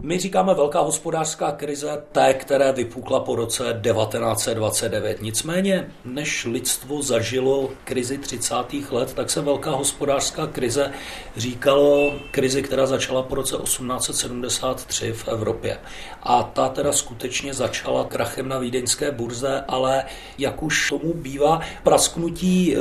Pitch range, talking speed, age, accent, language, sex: 130-150 Hz, 125 wpm, 40-59, native, Czech, male